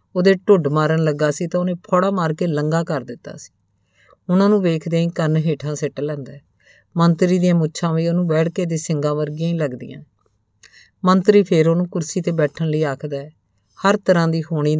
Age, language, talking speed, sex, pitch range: 50-69, Punjabi, 190 wpm, female, 145-180 Hz